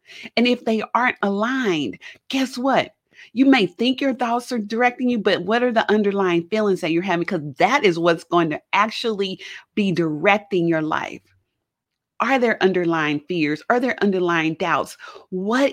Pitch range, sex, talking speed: 180-245 Hz, female, 170 wpm